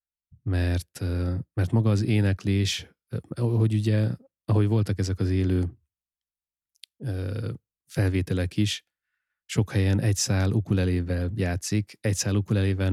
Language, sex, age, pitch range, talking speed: Hungarian, male, 30-49, 85-100 Hz, 105 wpm